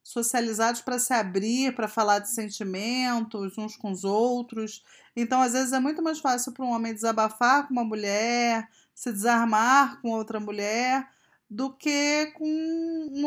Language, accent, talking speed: Portuguese, Brazilian, 160 wpm